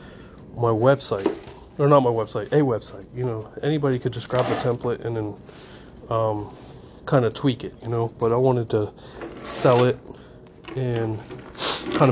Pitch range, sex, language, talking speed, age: 115-130 Hz, male, English, 165 wpm, 30-49